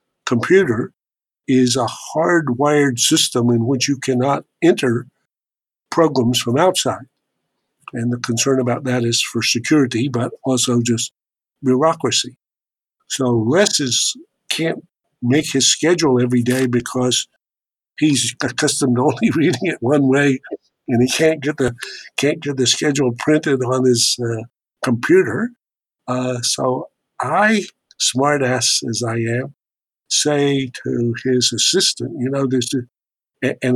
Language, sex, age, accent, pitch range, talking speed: English, male, 60-79, American, 120-140 Hz, 130 wpm